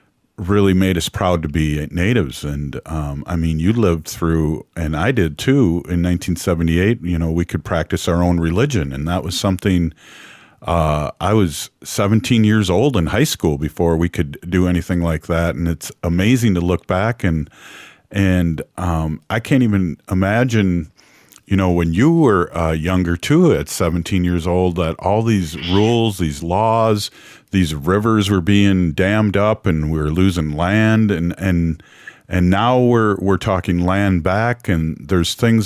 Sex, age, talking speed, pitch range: male, 50-69, 170 wpm, 85-105 Hz